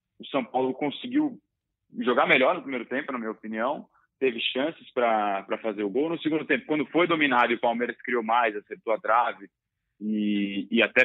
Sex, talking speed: male, 190 wpm